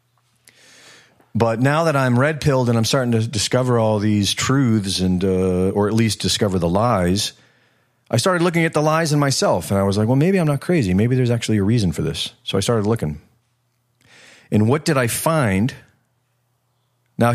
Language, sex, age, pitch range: English, male, 40-59, 105-125 Hz